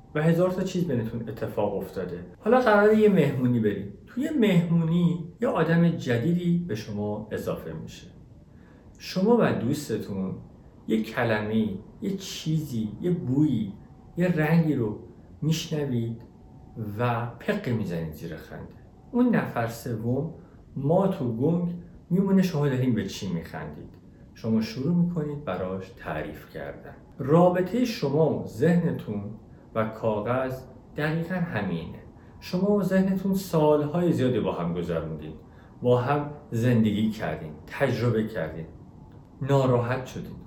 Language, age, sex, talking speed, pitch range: Persian, 50-69, male, 120 wpm, 110-165 Hz